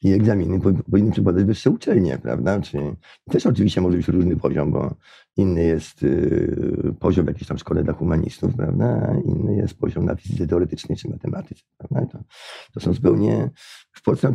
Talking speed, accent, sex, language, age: 190 wpm, native, male, Polish, 50-69